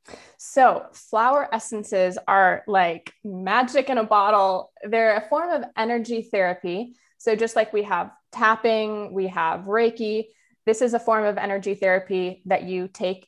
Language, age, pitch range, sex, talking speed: English, 20-39, 190-230 Hz, female, 155 wpm